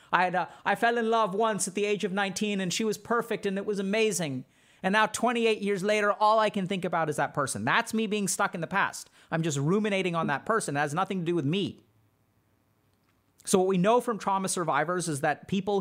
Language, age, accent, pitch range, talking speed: English, 40-59, American, 150-200 Hz, 245 wpm